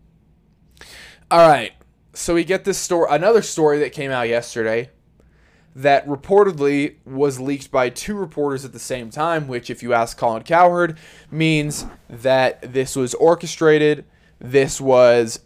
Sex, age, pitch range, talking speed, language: male, 20-39, 125-160 Hz, 145 wpm, English